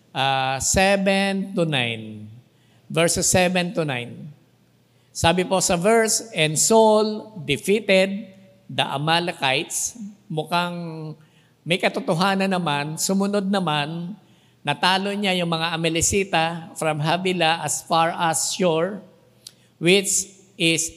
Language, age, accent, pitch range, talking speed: English, 50-69, Filipino, 160-195 Hz, 105 wpm